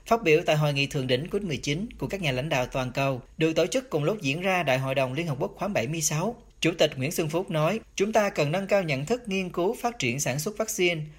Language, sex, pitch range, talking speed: Vietnamese, male, 145-200 Hz, 275 wpm